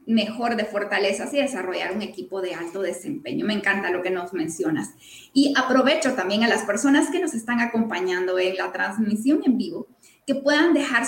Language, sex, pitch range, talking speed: Spanish, female, 205-275 Hz, 185 wpm